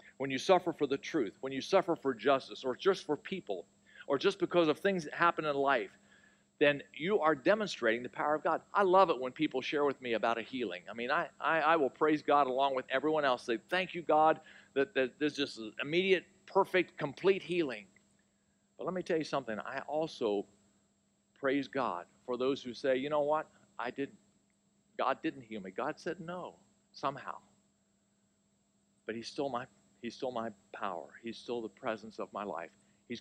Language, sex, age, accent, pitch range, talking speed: English, male, 50-69, American, 115-155 Hz, 200 wpm